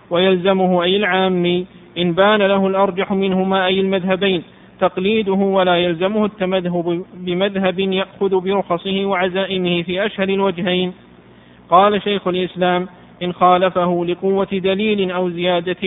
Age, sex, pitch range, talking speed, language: 50-69, male, 180-195 Hz, 115 wpm, Arabic